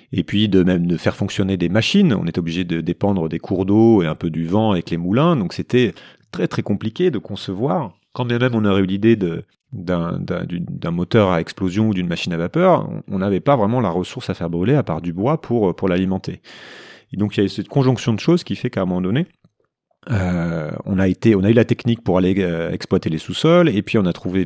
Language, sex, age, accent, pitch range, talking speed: French, male, 30-49, French, 95-125 Hz, 255 wpm